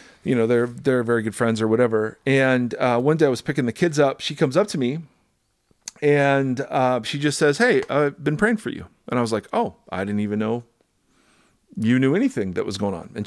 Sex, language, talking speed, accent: male, English, 235 wpm, American